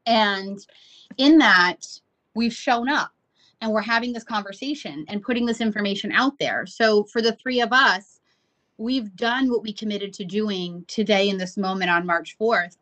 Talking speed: 175 wpm